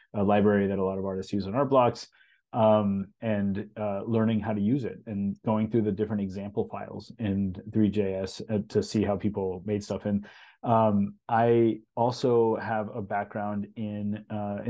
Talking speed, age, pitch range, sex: 175 wpm, 30-49, 100-115 Hz, male